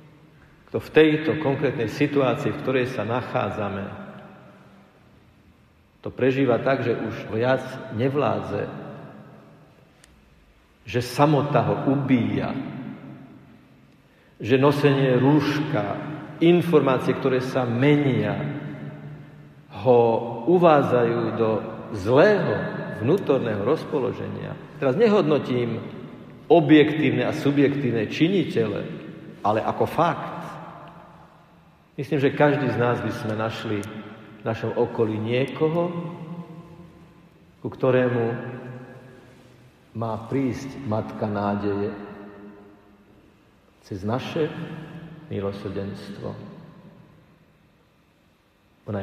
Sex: male